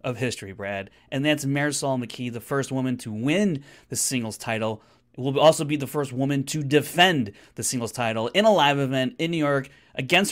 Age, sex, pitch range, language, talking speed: 30-49, male, 120-160 Hz, English, 200 wpm